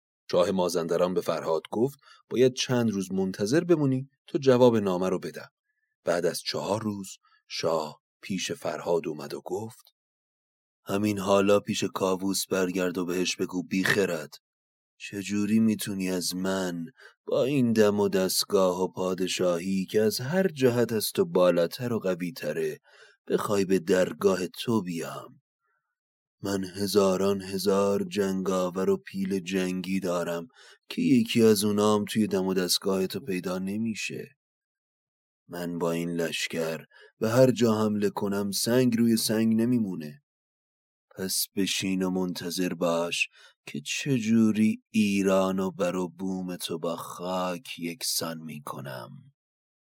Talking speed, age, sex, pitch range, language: 125 wpm, 30-49, male, 90-110 Hz, Persian